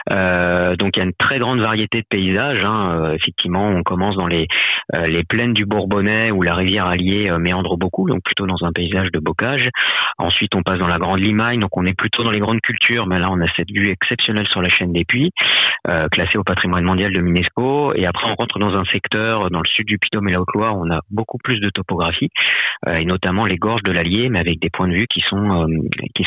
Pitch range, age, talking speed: 90-110 Hz, 40-59, 250 wpm